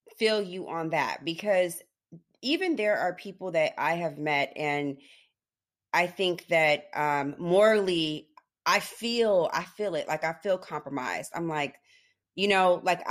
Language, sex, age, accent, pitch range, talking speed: English, female, 30-49, American, 150-195 Hz, 150 wpm